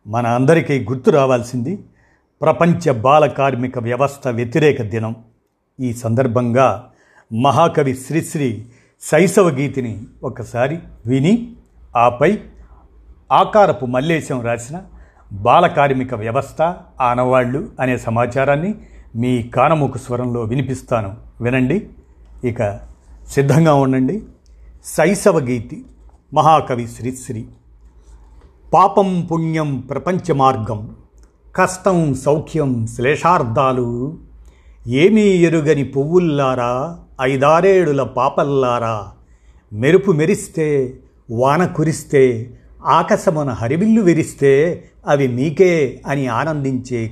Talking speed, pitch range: 80 wpm, 120-160 Hz